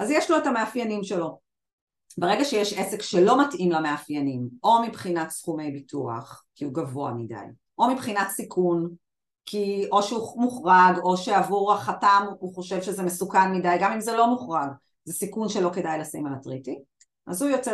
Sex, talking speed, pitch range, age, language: female, 165 wpm, 155-210 Hz, 40-59, Hebrew